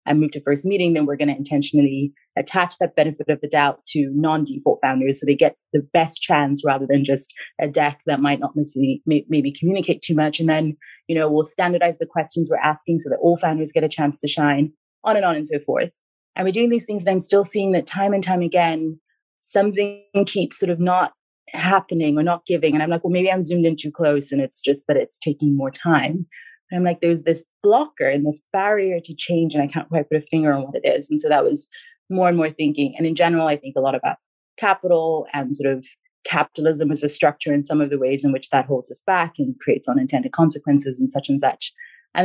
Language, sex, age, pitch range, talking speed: English, female, 30-49, 145-180 Hz, 235 wpm